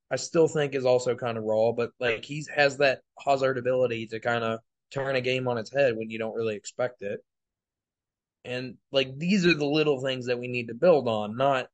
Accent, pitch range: American, 115-145 Hz